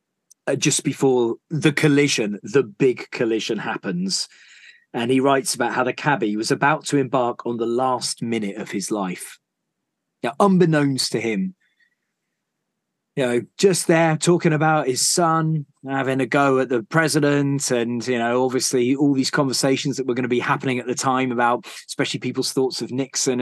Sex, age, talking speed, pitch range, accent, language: male, 30-49, 170 wpm, 120-145 Hz, British, English